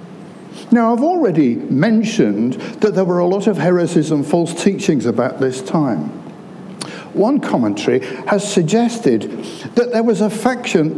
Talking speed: 140 wpm